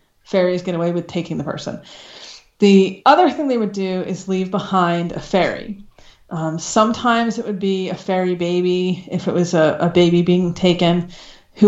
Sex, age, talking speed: female, 30-49, 180 wpm